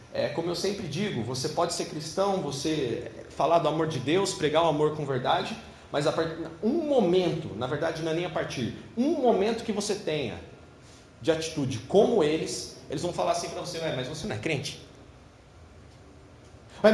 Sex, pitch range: male, 130-190 Hz